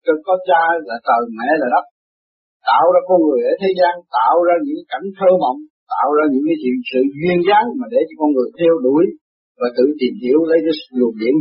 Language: Vietnamese